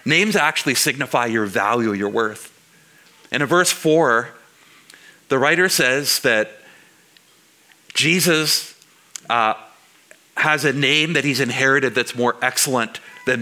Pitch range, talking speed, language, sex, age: 130-180 Hz, 120 wpm, English, male, 50-69